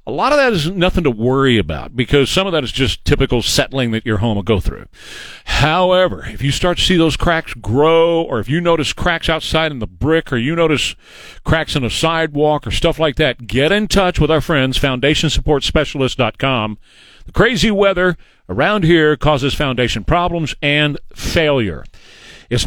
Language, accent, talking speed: English, American, 185 wpm